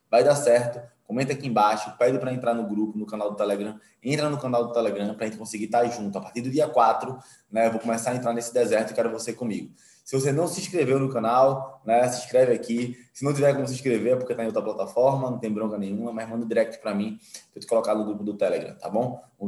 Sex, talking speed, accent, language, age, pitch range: male, 260 wpm, Brazilian, Portuguese, 20-39, 95-115 Hz